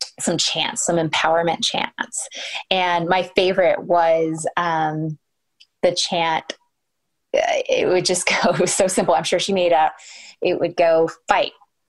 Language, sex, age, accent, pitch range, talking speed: English, female, 20-39, American, 170-215 Hz, 140 wpm